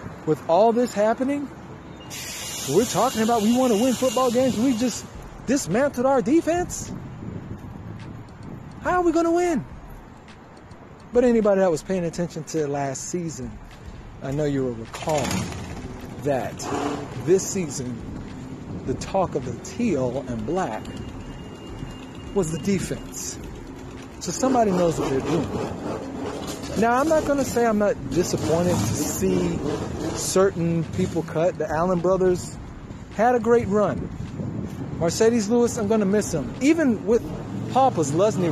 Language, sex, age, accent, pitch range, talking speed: English, male, 50-69, American, 140-225 Hz, 135 wpm